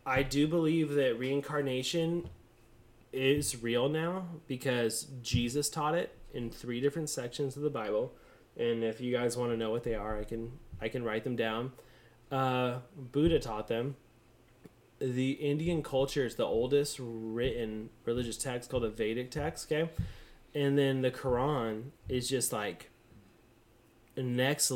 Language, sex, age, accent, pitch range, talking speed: English, male, 20-39, American, 115-145 Hz, 150 wpm